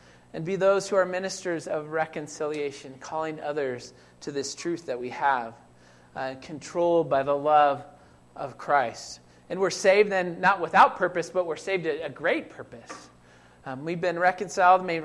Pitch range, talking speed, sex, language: 125-175 Hz, 170 wpm, male, English